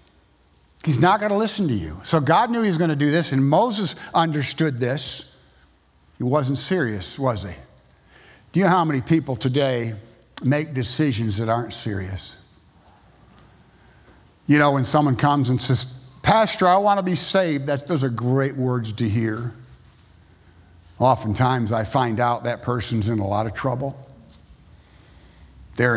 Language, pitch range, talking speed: English, 115-145 Hz, 160 wpm